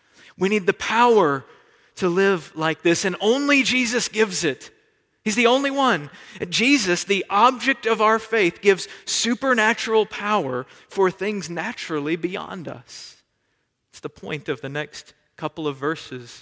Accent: American